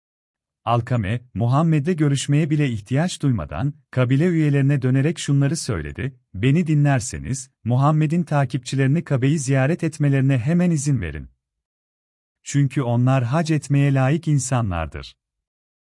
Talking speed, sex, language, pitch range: 105 wpm, male, Turkish, 90-150 Hz